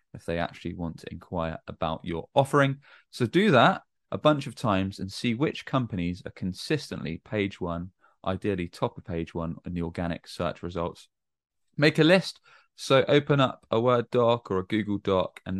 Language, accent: English, British